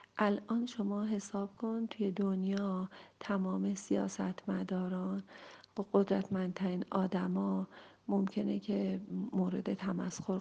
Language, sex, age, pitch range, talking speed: Persian, female, 40-59, 195-210 Hz, 90 wpm